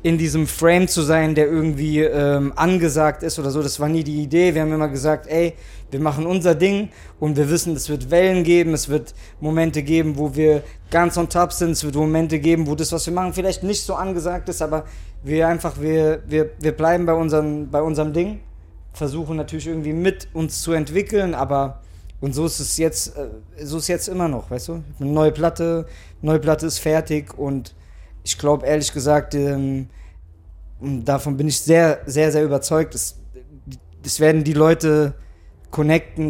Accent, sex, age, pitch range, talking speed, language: German, male, 20-39, 140-160 Hz, 190 wpm, German